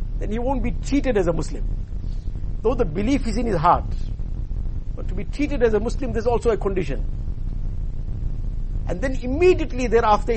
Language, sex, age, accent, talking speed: English, male, 50-69, Indian, 175 wpm